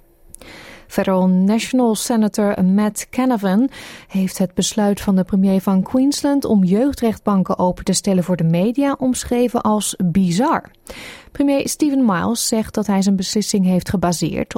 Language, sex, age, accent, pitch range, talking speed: Dutch, female, 30-49, Dutch, 185-245 Hz, 140 wpm